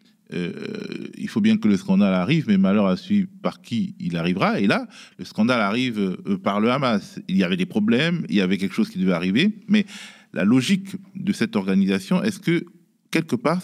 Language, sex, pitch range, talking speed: French, male, 170-215 Hz, 205 wpm